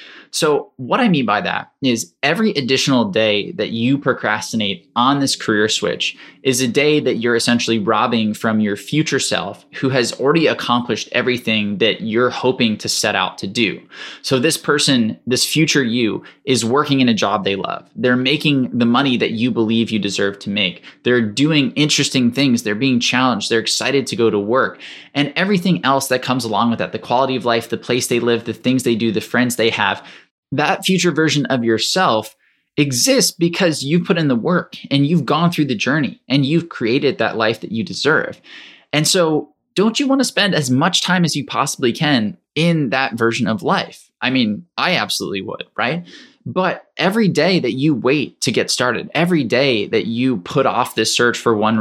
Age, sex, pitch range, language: 20-39, male, 115-150 Hz, English